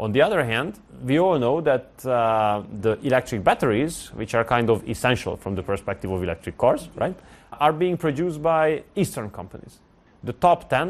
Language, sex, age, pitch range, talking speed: English, male, 30-49, 115-155 Hz, 180 wpm